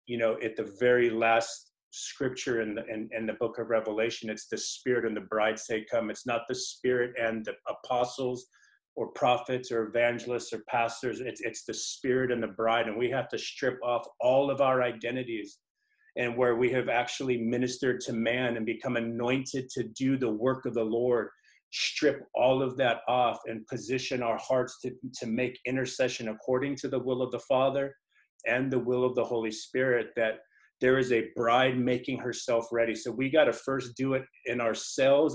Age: 40-59